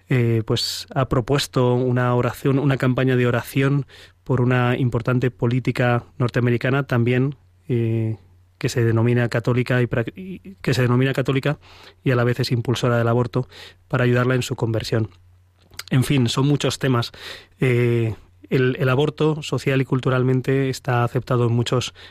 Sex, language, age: male, Spanish, 20-39